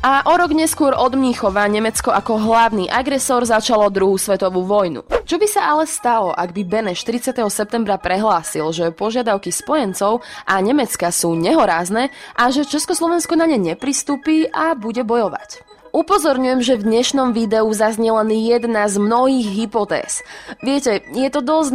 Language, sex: Slovak, female